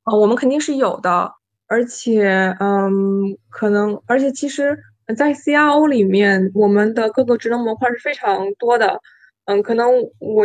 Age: 20-39